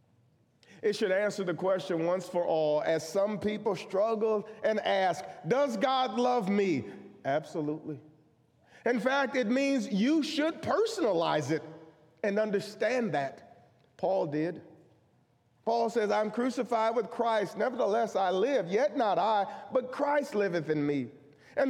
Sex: male